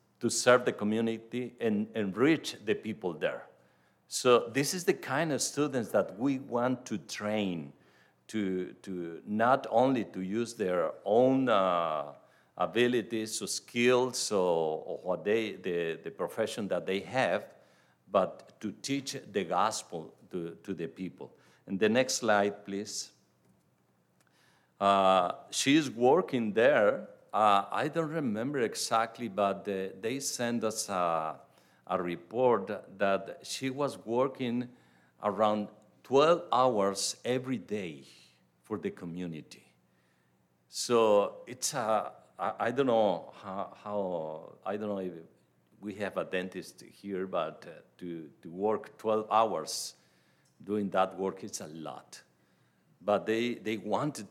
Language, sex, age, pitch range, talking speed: English, male, 50-69, 90-120 Hz, 135 wpm